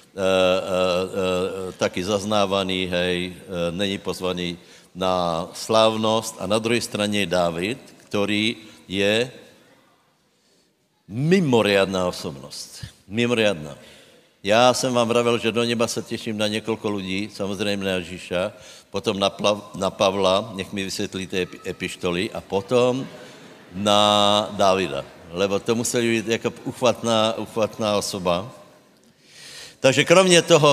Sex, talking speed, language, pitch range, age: male, 125 wpm, Slovak, 95-120 Hz, 60-79